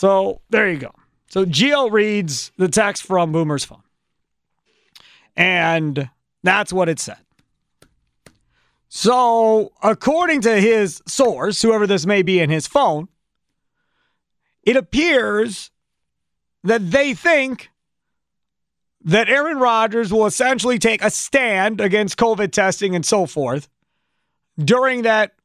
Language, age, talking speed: English, 40-59, 120 wpm